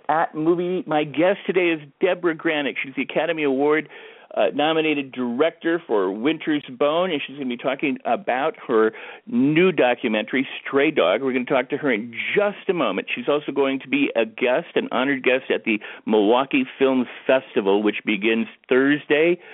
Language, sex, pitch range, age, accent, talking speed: English, male, 110-160 Hz, 50-69, American, 175 wpm